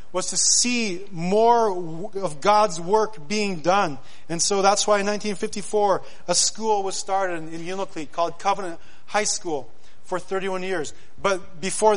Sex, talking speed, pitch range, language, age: male, 160 wpm, 175-215 Hz, English, 30-49